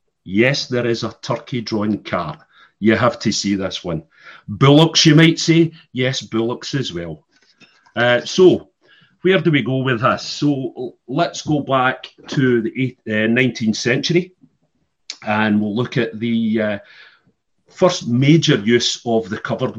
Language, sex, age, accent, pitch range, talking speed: English, male, 40-59, British, 105-125 Hz, 150 wpm